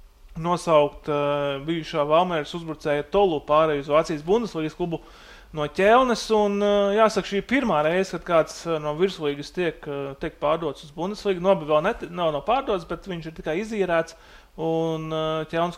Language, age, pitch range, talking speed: English, 30-49, 155-190 Hz, 150 wpm